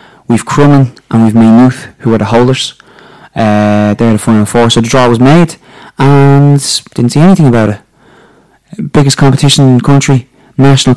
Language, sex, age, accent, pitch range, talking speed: English, male, 20-39, British, 115-140 Hz, 170 wpm